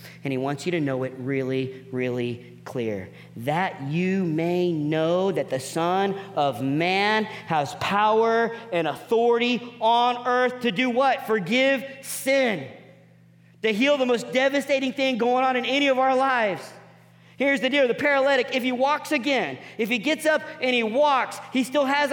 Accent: American